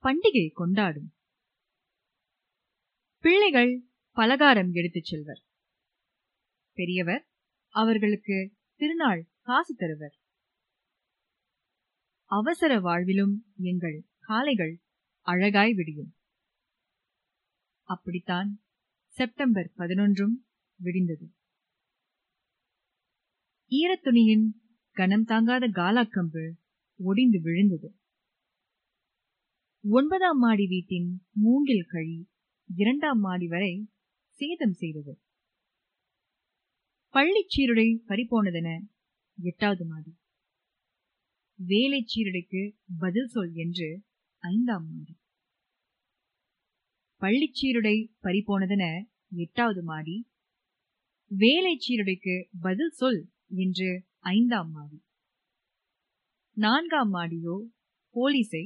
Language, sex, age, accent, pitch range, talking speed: Tamil, female, 20-39, native, 180-235 Hz, 55 wpm